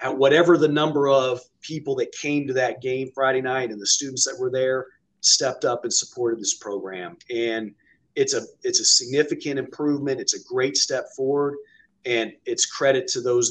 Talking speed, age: 180 wpm, 40-59